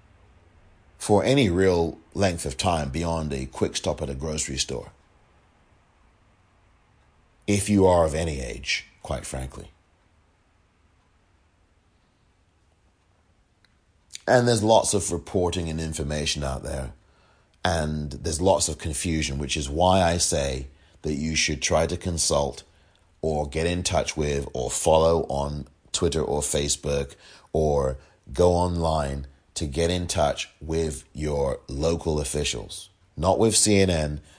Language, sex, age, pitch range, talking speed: English, male, 30-49, 75-90 Hz, 125 wpm